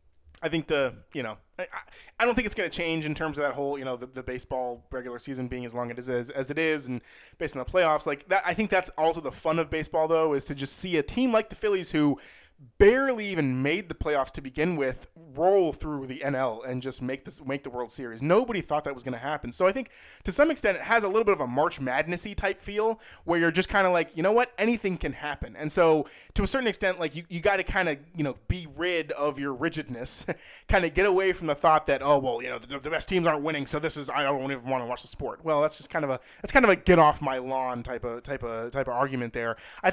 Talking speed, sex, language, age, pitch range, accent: 285 wpm, male, English, 20-39, 135-190 Hz, American